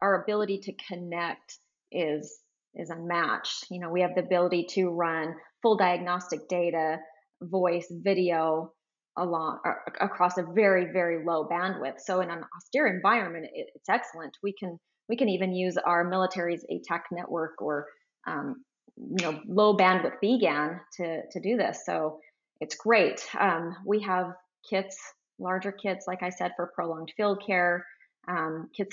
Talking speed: 155 wpm